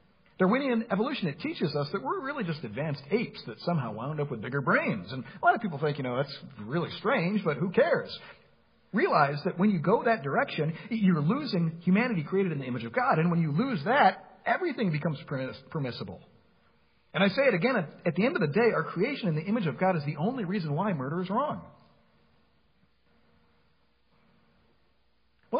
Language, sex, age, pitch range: English, male, 50-69, 145-215 Hz